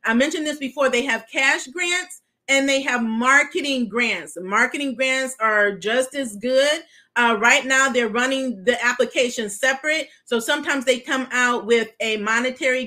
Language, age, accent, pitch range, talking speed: English, 40-59, American, 235-275 Hz, 165 wpm